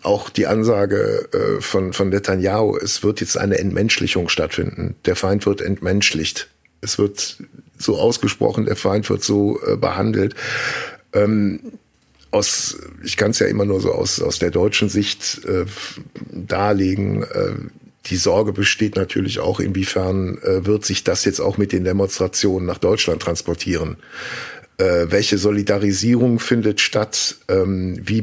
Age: 50-69